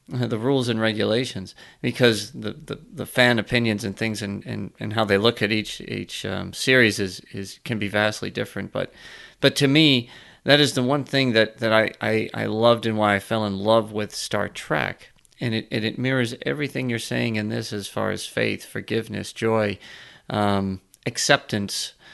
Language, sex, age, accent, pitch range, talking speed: English, male, 40-59, American, 110-135 Hz, 190 wpm